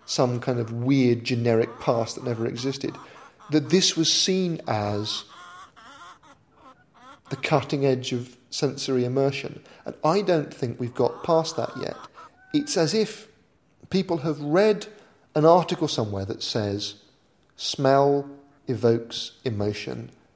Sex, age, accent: male, 40-59, British